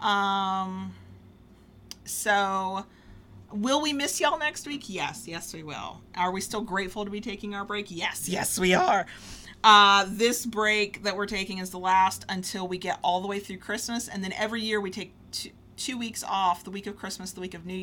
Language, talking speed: English, 200 wpm